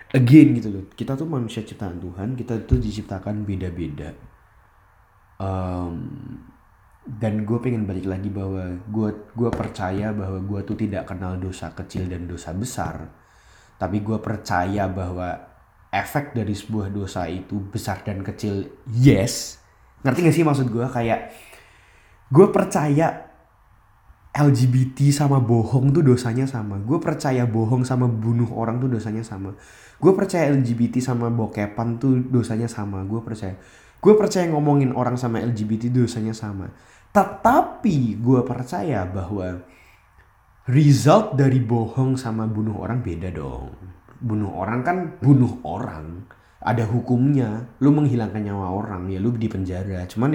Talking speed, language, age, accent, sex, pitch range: 135 wpm, Indonesian, 20-39, native, male, 95-125 Hz